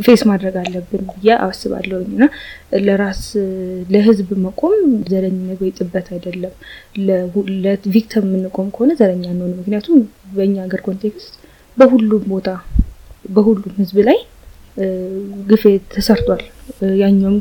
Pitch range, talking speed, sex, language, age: 185-210 Hz, 105 wpm, female, Amharic, 20-39